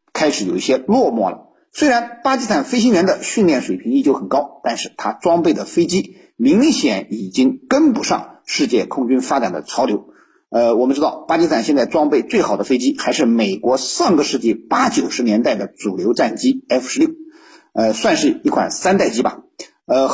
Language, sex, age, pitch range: Chinese, male, 50-69, 230-315 Hz